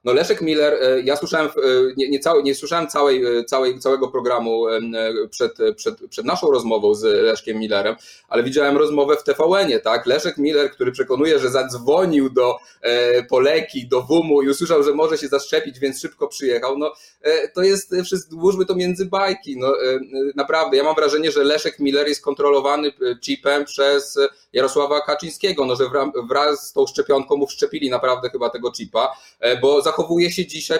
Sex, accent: male, native